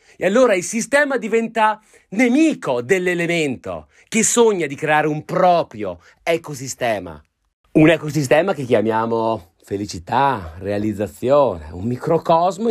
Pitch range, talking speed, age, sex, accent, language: 100-150 Hz, 105 wpm, 30-49, male, native, Italian